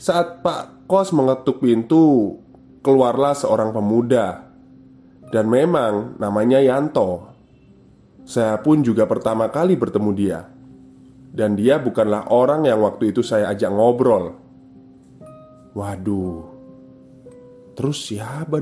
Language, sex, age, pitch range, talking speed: Indonesian, male, 20-39, 100-135 Hz, 105 wpm